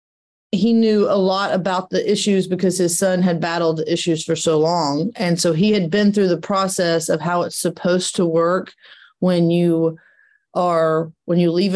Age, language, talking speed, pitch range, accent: 30-49, English, 185 wpm, 170-195 Hz, American